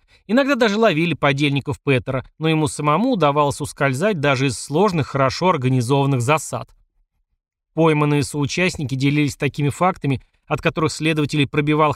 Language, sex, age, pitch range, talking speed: Russian, male, 30-49, 135-165 Hz, 125 wpm